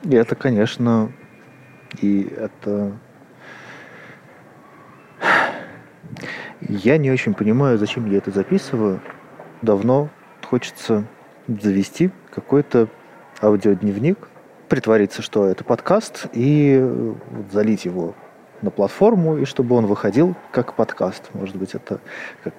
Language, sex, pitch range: Russian, male, 105-140 Hz